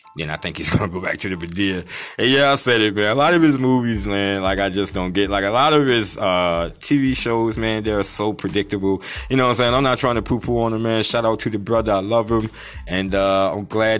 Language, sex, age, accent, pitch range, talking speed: English, male, 20-39, American, 95-110 Hz, 275 wpm